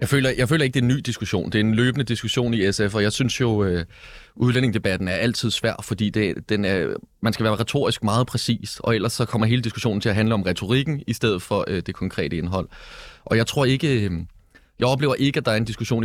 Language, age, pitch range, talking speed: Danish, 30-49, 90-115 Hz, 250 wpm